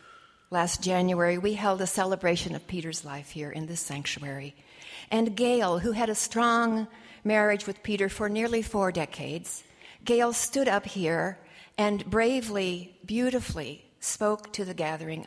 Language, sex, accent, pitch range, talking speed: English, female, American, 165-210 Hz, 145 wpm